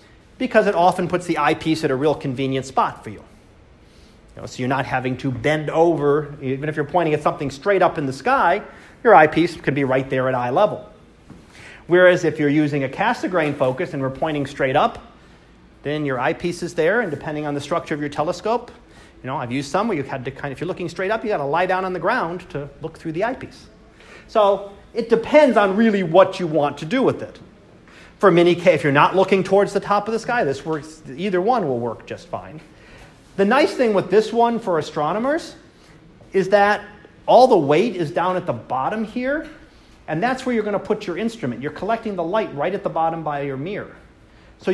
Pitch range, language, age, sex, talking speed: 145-200 Hz, English, 40-59, male, 230 wpm